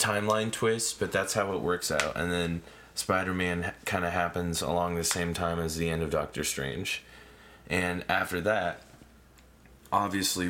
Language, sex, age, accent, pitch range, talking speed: English, male, 20-39, American, 80-105 Hz, 160 wpm